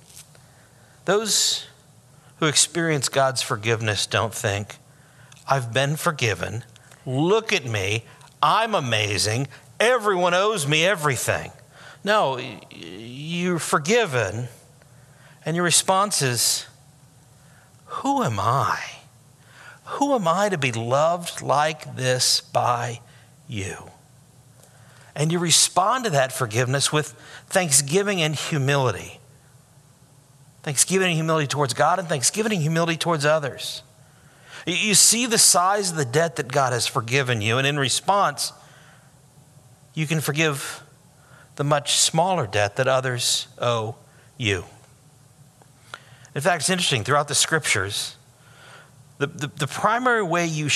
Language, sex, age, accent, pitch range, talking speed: English, male, 50-69, American, 130-160 Hz, 115 wpm